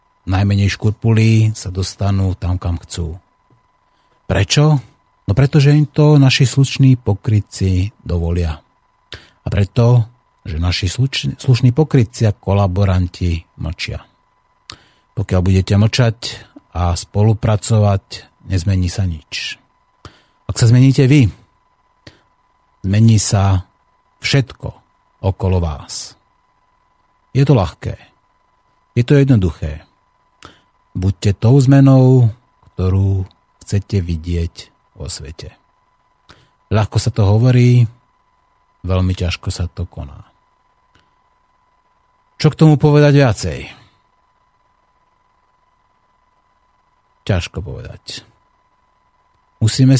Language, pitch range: Slovak, 95-130 Hz